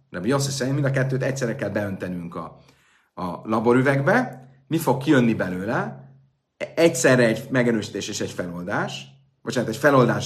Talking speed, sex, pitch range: 140 wpm, male, 110-135 Hz